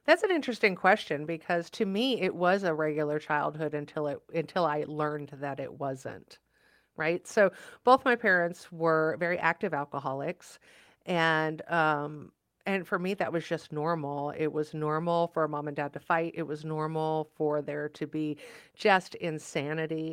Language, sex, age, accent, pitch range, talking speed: English, female, 40-59, American, 155-195 Hz, 170 wpm